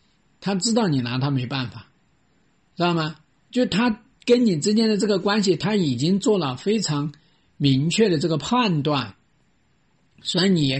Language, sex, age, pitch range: Chinese, male, 50-69, 140-195 Hz